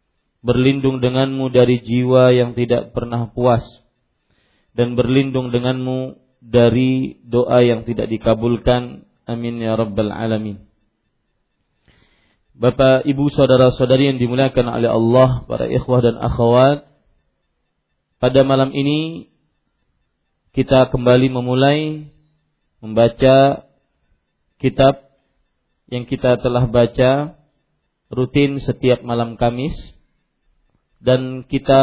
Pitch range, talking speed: 120-135 Hz, 95 wpm